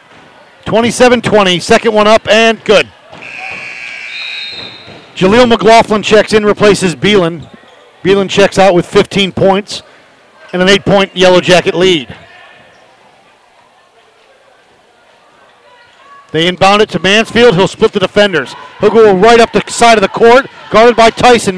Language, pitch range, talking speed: English, 190-245 Hz, 125 wpm